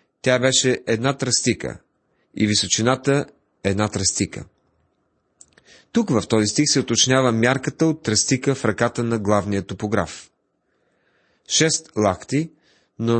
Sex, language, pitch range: male, Bulgarian, 110-145 Hz